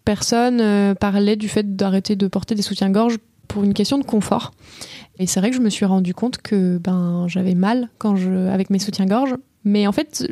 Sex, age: female, 20-39